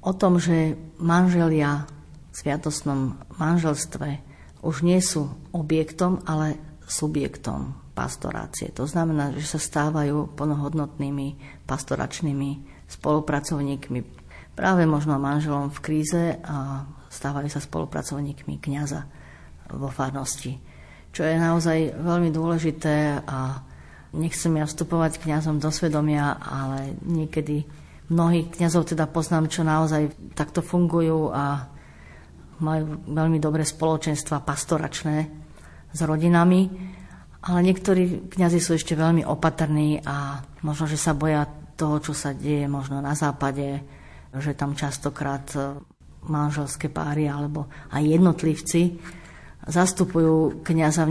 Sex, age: female, 50-69